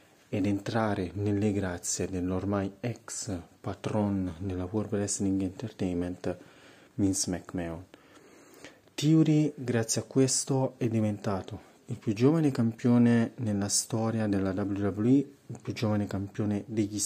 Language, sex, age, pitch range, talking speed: Italian, male, 30-49, 100-120 Hz, 115 wpm